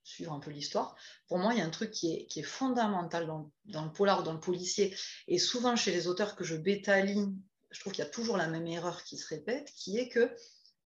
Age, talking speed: 30-49, 255 wpm